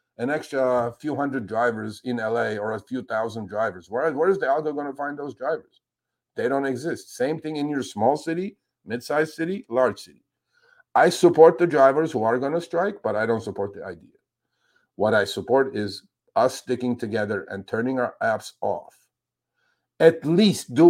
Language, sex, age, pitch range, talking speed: English, male, 50-69, 120-155 Hz, 185 wpm